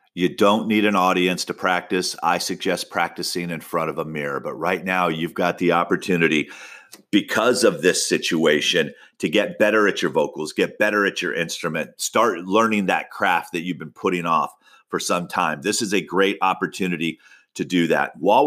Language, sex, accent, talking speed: English, male, American, 190 wpm